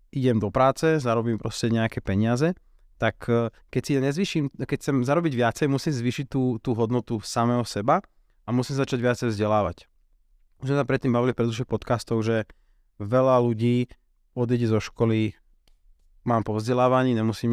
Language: Slovak